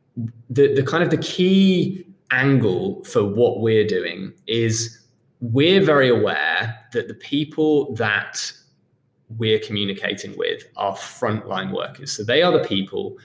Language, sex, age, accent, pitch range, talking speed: English, male, 20-39, British, 110-155 Hz, 135 wpm